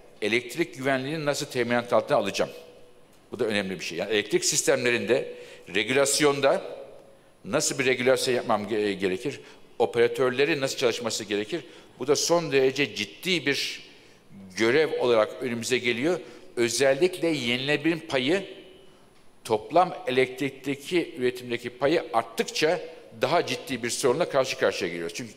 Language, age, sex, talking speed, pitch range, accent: Turkish, 60-79, male, 120 wpm, 120-165 Hz, native